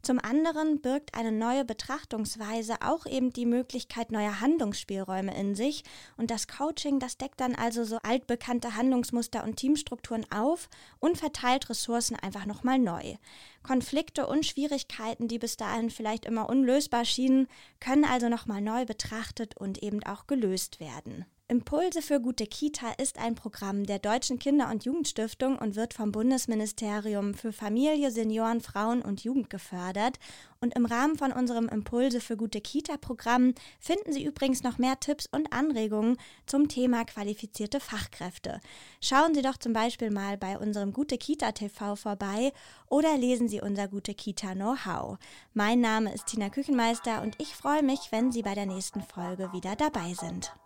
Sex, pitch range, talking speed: female, 215-265 Hz, 160 wpm